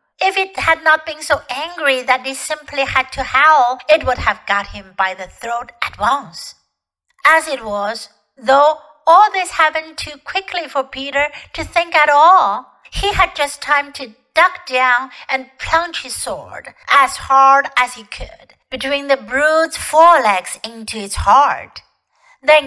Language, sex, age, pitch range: Chinese, female, 60-79, 250-325 Hz